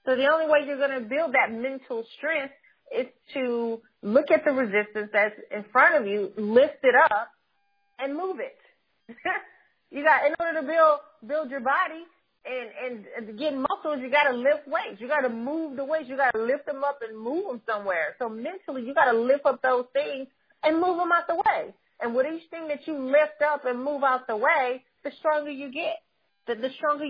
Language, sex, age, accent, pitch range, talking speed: English, female, 30-49, American, 245-315 Hz, 215 wpm